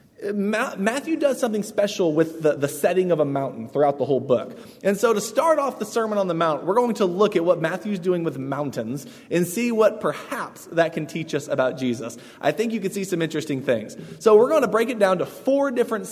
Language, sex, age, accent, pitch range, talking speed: English, male, 20-39, American, 155-220 Hz, 235 wpm